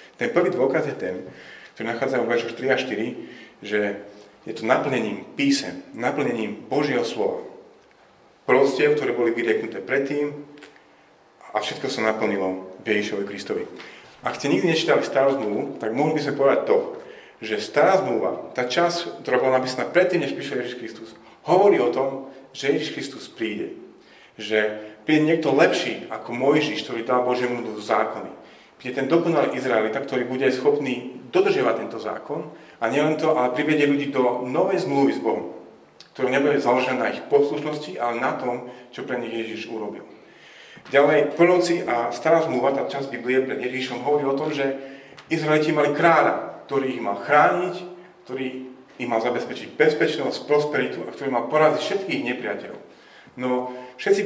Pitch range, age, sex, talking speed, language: 125-155 Hz, 40-59, male, 160 wpm, Slovak